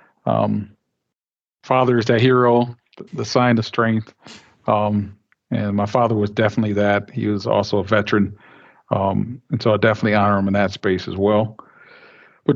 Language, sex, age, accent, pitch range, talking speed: English, male, 50-69, American, 105-130 Hz, 160 wpm